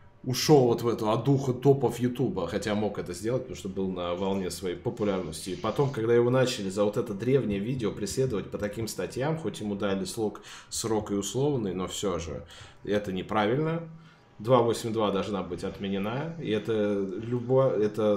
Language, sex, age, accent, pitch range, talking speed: Russian, male, 20-39, native, 95-120 Hz, 165 wpm